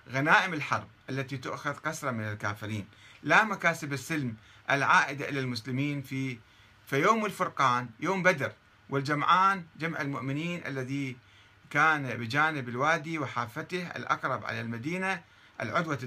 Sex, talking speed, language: male, 110 wpm, Arabic